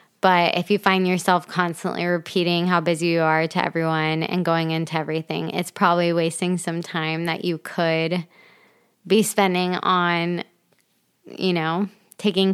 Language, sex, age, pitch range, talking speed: English, female, 20-39, 175-195 Hz, 150 wpm